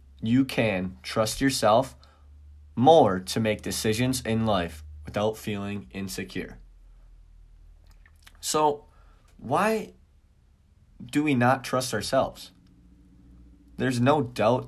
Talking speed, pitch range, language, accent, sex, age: 95 wpm, 90-120 Hz, English, American, male, 20-39